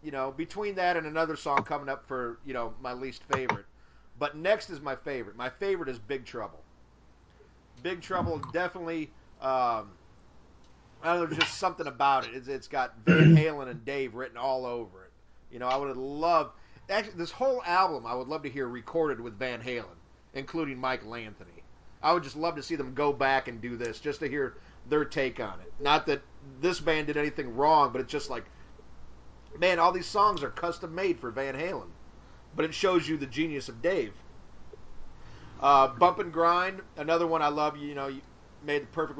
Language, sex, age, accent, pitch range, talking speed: English, male, 40-59, American, 125-165 Hz, 200 wpm